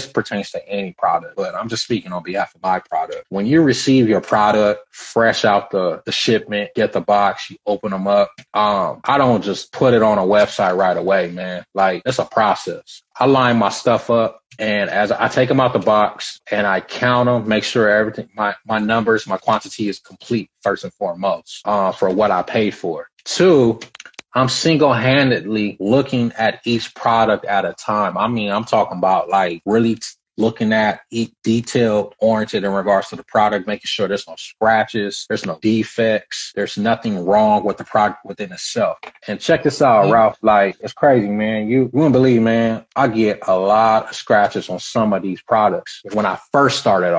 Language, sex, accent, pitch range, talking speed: English, male, American, 105-125 Hz, 195 wpm